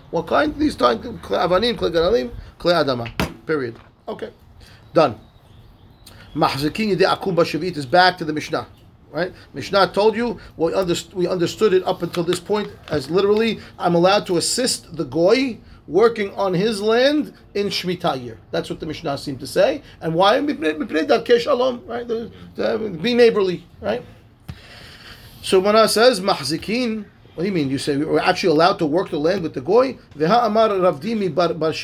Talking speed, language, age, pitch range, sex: 145 wpm, English, 30-49, 150-210 Hz, male